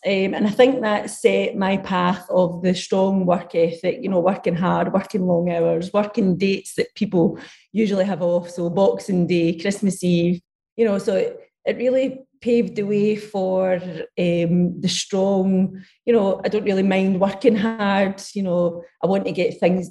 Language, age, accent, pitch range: English, 30-49, British, 185-225 Hz